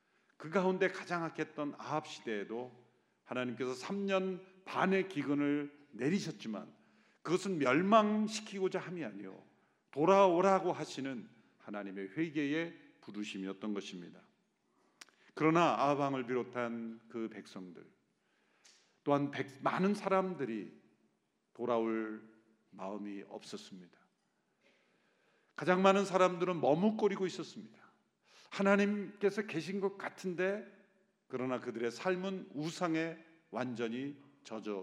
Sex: male